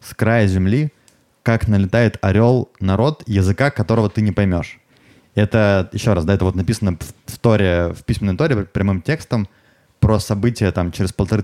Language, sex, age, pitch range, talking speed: Russian, male, 20-39, 90-115 Hz, 165 wpm